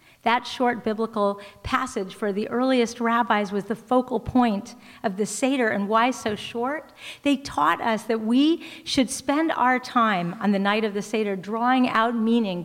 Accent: American